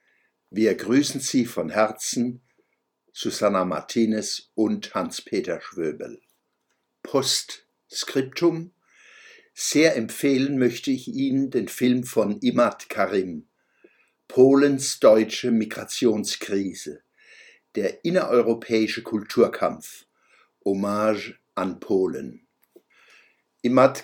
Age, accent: 60-79, German